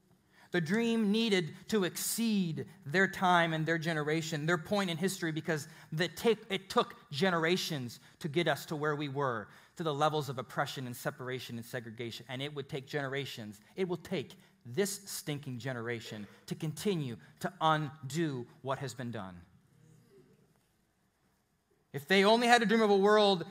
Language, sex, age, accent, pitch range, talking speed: English, male, 30-49, American, 145-190 Hz, 160 wpm